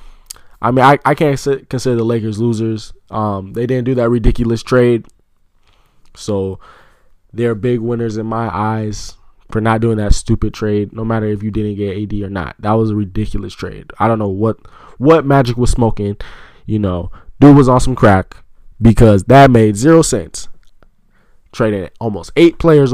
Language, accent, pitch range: English, American, 100-125 Hz